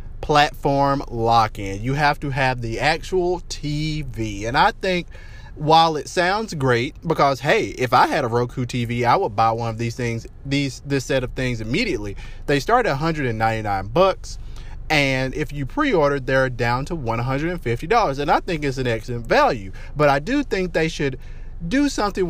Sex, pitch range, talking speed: male, 120-160 Hz, 180 wpm